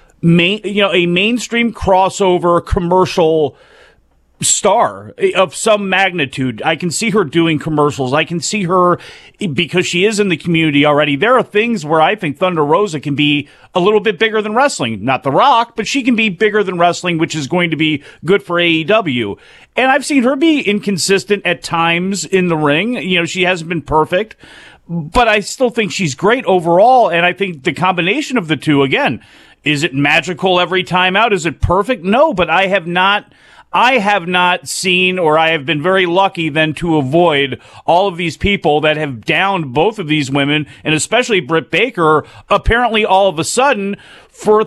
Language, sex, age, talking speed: English, male, 40-59, 190 wpm